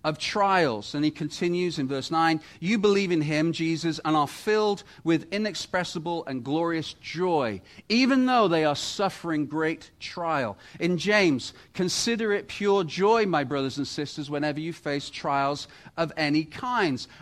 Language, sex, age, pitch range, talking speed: English, male, 40-59, 140-180 Hz, 155 wpm